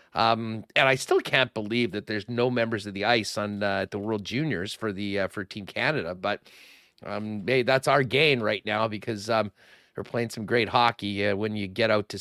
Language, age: English, 40-59